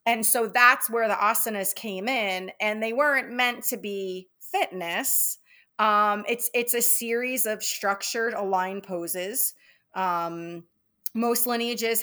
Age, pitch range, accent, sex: 30-49, 185-240 Hz, American, female